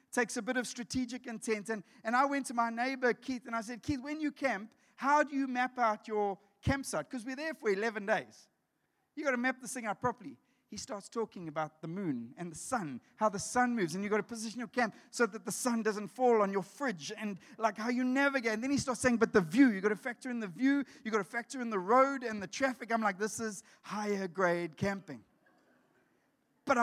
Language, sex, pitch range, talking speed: English, male, 215-260 Hz, 245 wpm